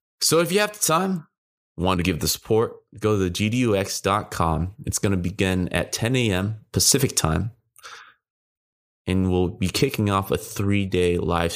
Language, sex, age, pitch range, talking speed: English, male, 20-39, 90-110 Hz, 165 wpm